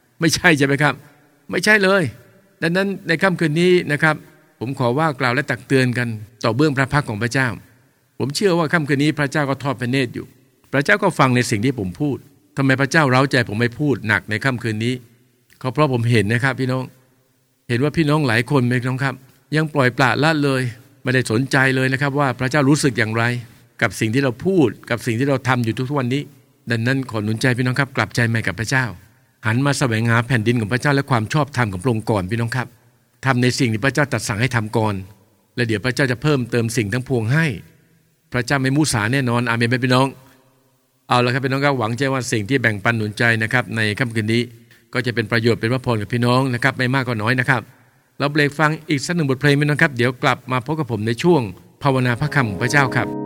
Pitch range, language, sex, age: 120-140 Hz, English, male, 60-79